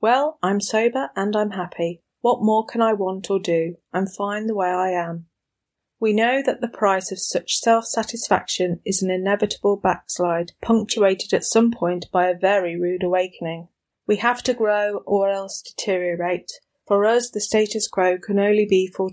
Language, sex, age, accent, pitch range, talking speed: English, female, 30-49, British, 180-220 Hz, 175 wpm